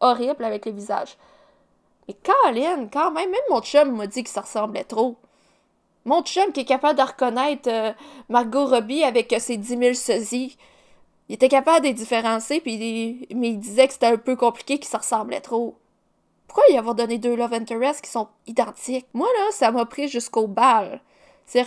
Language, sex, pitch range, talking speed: French, female, 225-280 Hz, 195 wpm